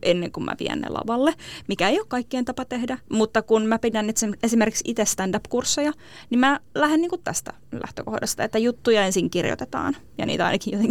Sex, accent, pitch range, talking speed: female, native, 195-245 Hz, 185 wpm